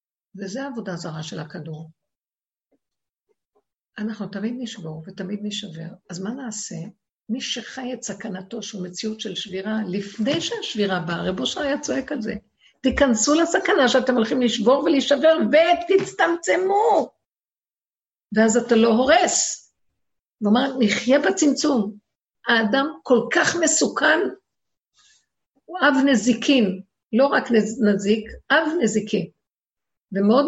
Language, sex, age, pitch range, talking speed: Hebrew, female, 50-69, 195-260 Hz, 110 wpm